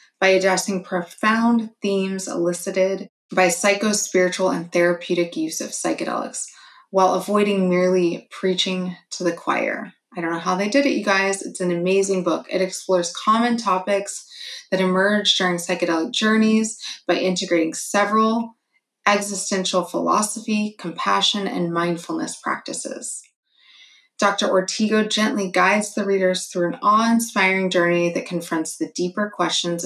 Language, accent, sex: English, American, female